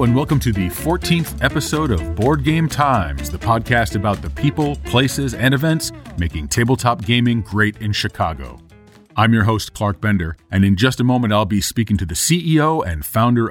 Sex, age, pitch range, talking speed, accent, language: male, 40-59, 95-125 Hz, 185 wpm, American, English